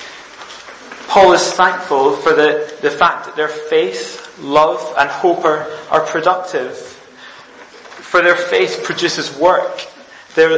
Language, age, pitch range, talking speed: English, 20-39, 155-195 Hz, 125 wpm